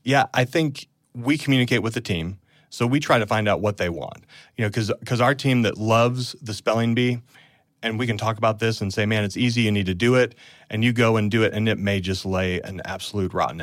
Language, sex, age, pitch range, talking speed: English, male, 30-49, 105-125 Hz, 250 wpm